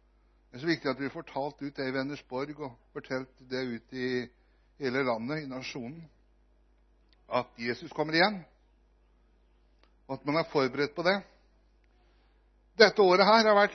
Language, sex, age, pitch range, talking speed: Swedish, male, 60-79, 125-170 Hz, 150 wpm